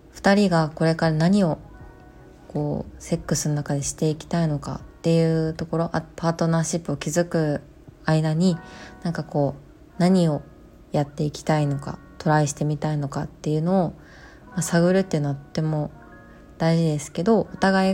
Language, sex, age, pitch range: Japanese, female, 20-39, 150-175 Hz